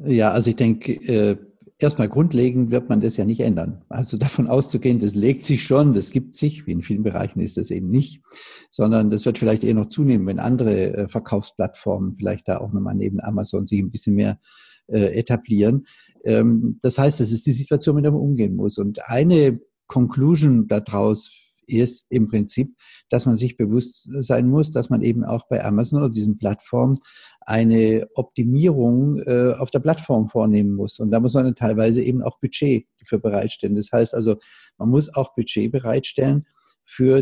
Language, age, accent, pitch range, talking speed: German, 50-69, German, 110-135 Hz, 185 wpm